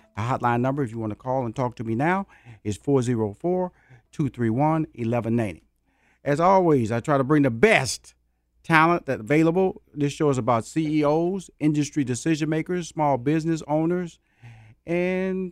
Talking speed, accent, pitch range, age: 145 wpm, American, 120-155 Hz, 40-59